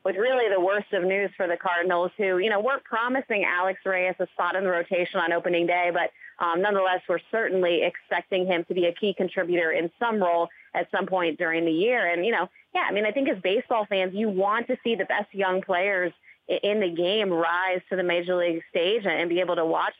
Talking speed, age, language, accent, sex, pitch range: 235 wpm, 30-49, English, American, female, 175-215 Hz